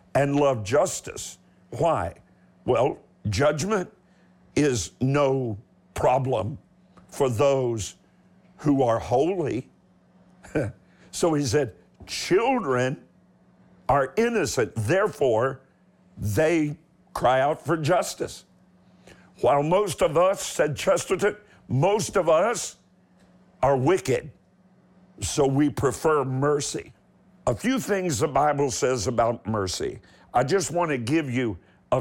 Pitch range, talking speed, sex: 115-170 Hz, 105 wpm, male